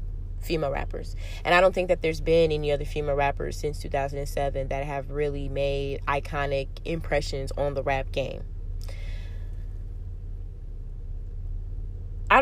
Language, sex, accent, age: English, female, American, 20-39